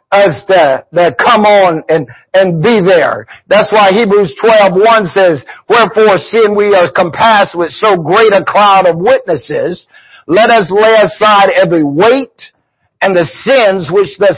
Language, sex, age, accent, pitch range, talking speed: English, male, 60-79, American, 180-220 Hz, 155 wpm